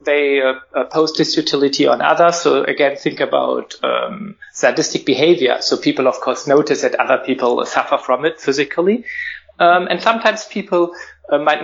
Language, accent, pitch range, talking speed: English, German, 130-175 Hz, 160 wpm